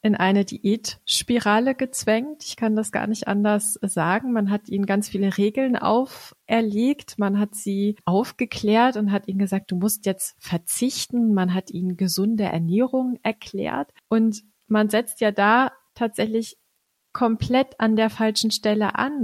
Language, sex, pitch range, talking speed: German, female, 195-230 Hz, 150 wpm